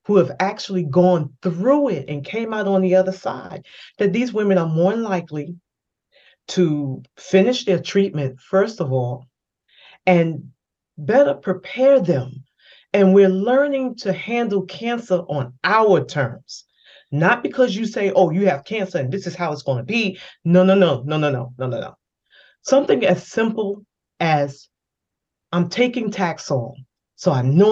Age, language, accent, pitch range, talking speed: 40-59, English, American, 155-210 Hz, 160 wpm